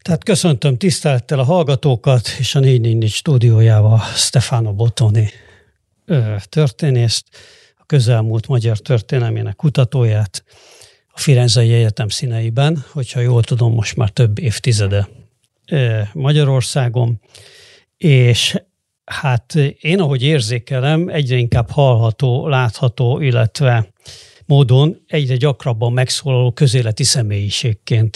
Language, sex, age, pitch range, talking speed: Hungarian, male, 60-79, 115-140 Hz, 95 wpm